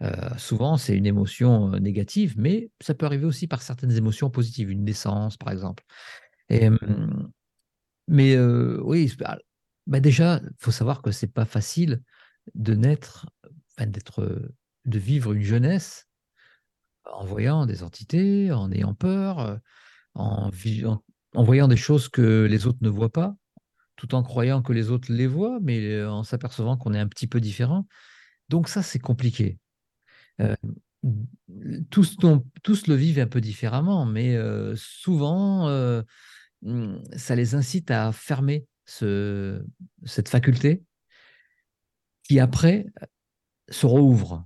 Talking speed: 145 wpm